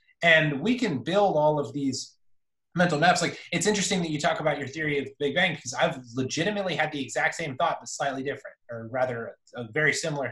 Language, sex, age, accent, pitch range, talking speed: English, male, 20-39, American, 130-160 Hz, 220 wpm